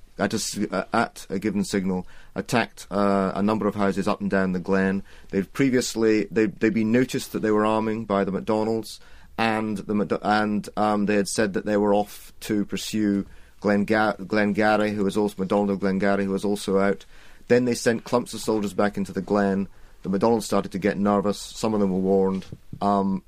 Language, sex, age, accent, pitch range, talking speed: English, male, 30-49, British, 95-110 Hz, 200 wpm